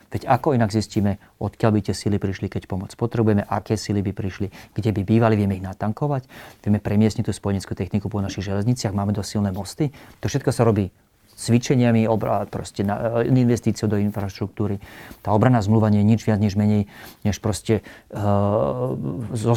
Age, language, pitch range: 40-59, Slovak, 105-115 Hz